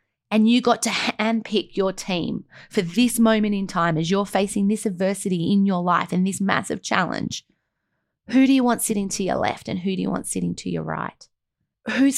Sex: female